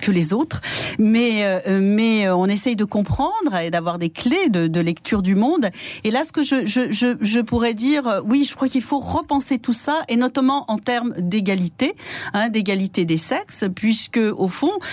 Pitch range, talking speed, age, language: 175-235 Hz, 195 wpm, 40-59, French